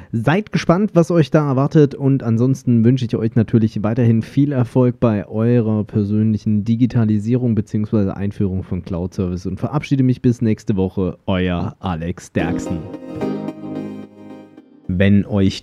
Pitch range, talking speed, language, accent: 100-125 Hz, 130 wpm, German, German